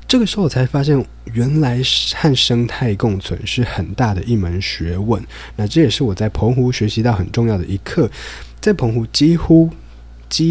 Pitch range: 95-125 Hz